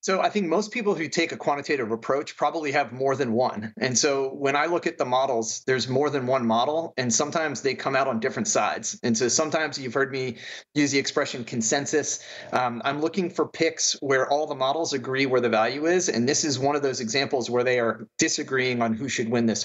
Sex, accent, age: male, American, 30-49